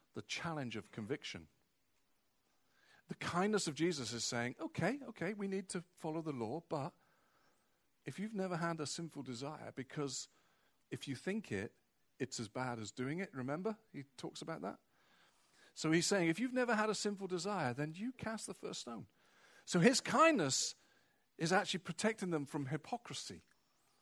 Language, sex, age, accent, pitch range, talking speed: English, male, 40-59, British, 130-195 Hz, 165 wpm